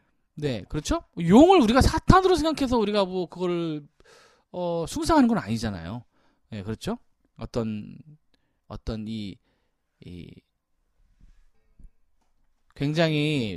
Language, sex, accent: Korean, male, native